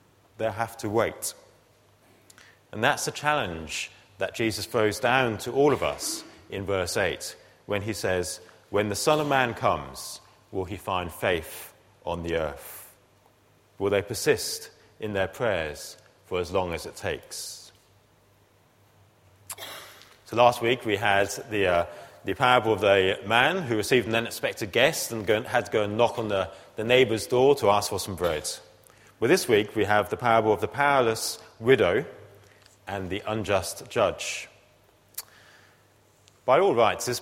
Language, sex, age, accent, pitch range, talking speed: English, male, 30-49, British, 100-125 Hz, 160 wpm